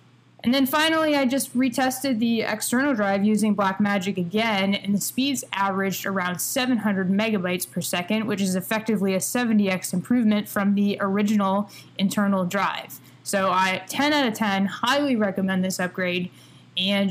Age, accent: 10-29, American